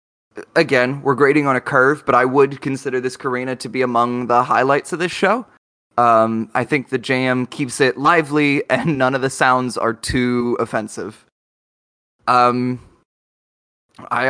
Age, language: 20-39, English